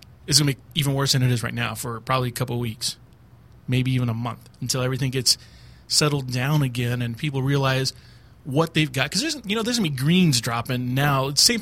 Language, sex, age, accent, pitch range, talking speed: English, male, 30-49, American, 120-150 Hz, 230 wpm